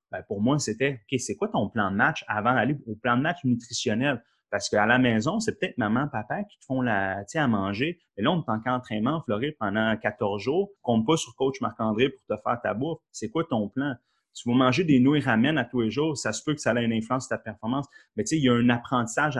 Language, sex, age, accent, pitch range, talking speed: French, male, 30-49, Canadian, 110-145 Hz, 270 wpm